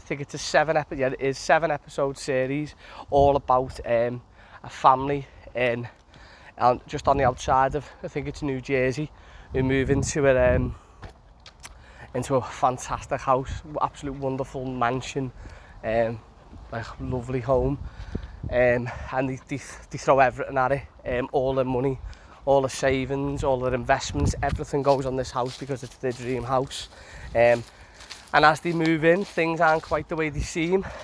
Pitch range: 120-140 Hz